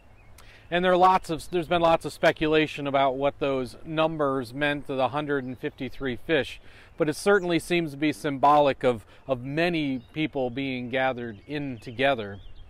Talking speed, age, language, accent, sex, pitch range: 185 wpm, 40-59, English, American, male, 130-170 Hz